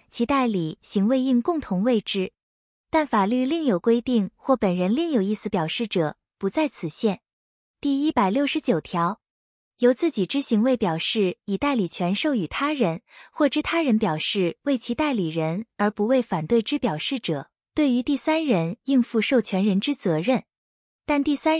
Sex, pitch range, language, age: female, 190-275 Hz, Chinese, 20-39